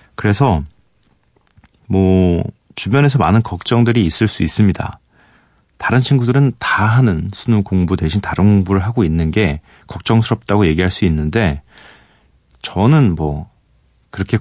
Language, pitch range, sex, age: Korean, 90-115 Hz, male, 40-59